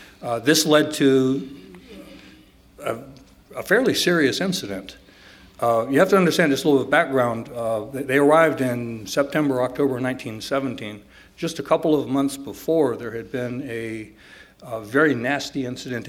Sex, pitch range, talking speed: male, 115-140 Hz, 145 wpm